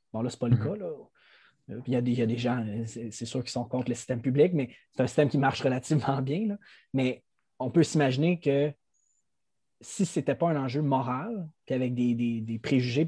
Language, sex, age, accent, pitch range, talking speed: French, male, 20-39, Canadian, 125-145 Hz, 240 wpm